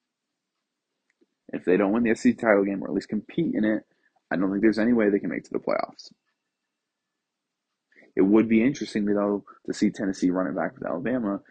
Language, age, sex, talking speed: English, 20-39, male, 210 wpm